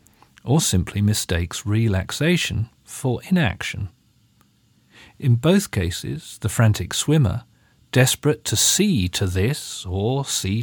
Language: English